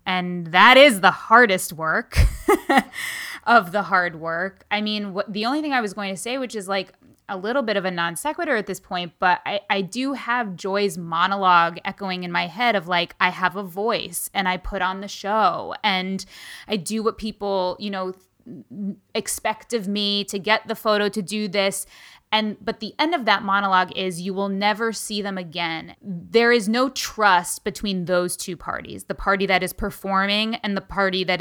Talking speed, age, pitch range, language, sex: 200 wpm, 20-39, 185-215 Hz, English, female